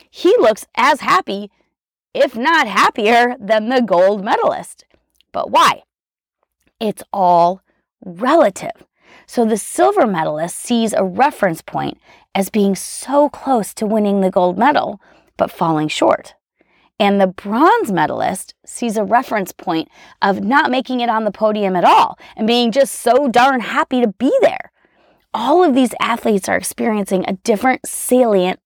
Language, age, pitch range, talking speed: English, 30-49, 190-255 Hz, 150 wpm